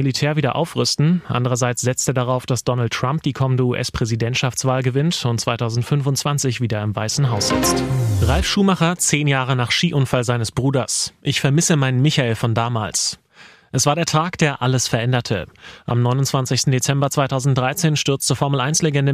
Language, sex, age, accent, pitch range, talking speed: German, male, 30-49, German, 115-140 Hz, 150 wpm